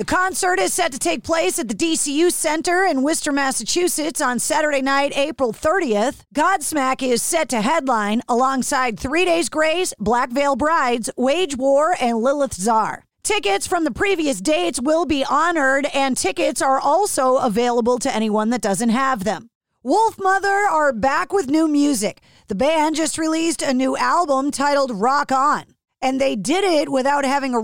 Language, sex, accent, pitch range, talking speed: English, female, American, 250-325 Hz, 170 wpm